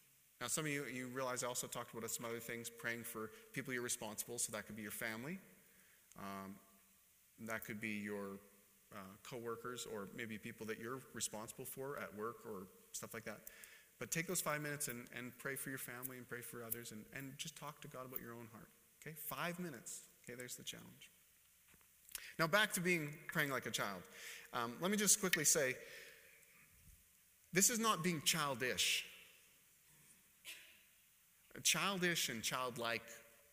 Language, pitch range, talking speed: English, 115-165 Hz, 175 wpm